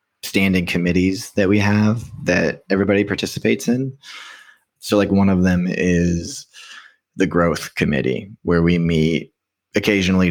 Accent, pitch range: American, 80-100 Hz